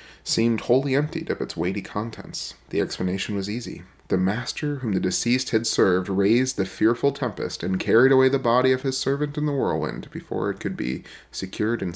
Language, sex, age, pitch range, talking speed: English, male, 30-49, 95-130 Hz, 195 wpm